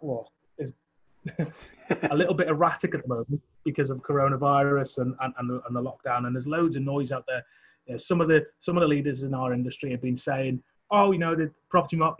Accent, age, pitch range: British, 30-49, 130-150 Hz